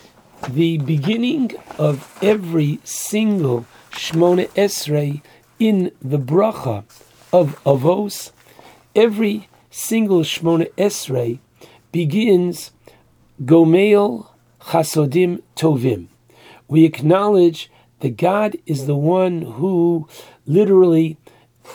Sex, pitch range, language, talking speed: male, 150-200 Hz, English, 80 wpm